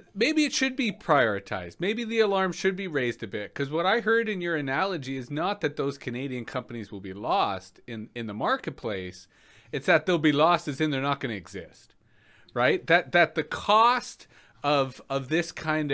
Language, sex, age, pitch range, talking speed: English, male, 30-49, 125-180 Hz, 205 wpm